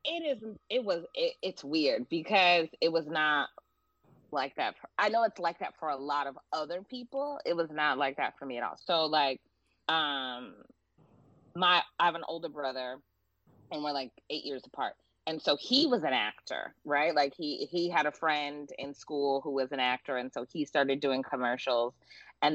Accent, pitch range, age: American, 145-220 Hz, 20-39